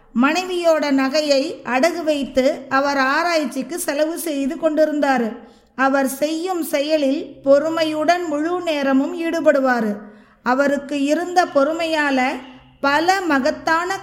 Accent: native